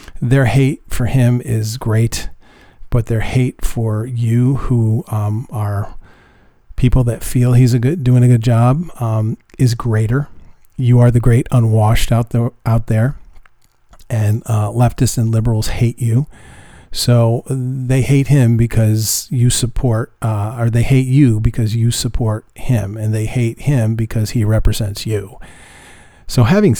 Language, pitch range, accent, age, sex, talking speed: English, 110-125 Hz, American, 40-59, male, 155 wpm